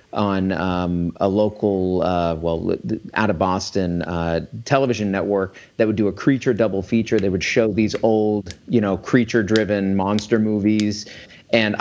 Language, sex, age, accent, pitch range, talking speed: English, male, 40-59, American, 95-120 Hz, 150 wpm